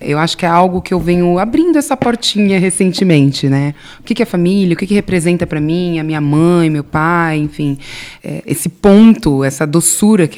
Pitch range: 150-205 Hz